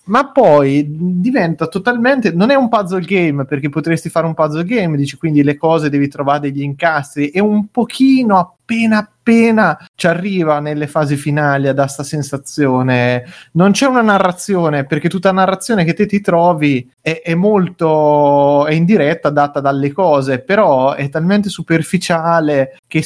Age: 30-49